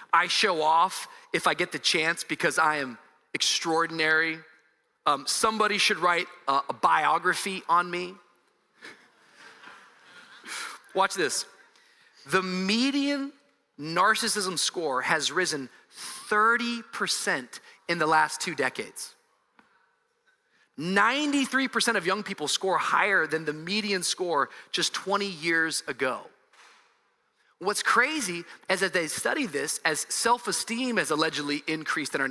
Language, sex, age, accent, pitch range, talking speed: English, male, 30-49, American, 160-230 Hz, 115 wpm